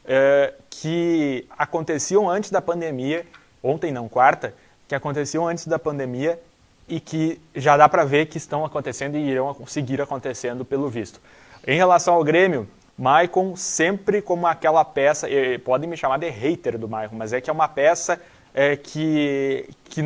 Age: 20-39